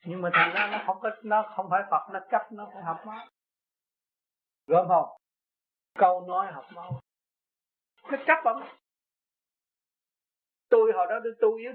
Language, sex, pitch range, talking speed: Vietnamese, male, 180-265 Hz, 160 wpm